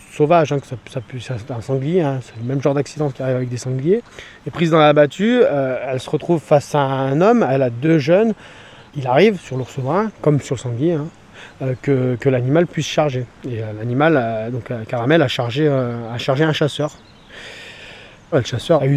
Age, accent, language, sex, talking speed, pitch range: 30-49, French, French, male, 225 wpm, 125-155 Hz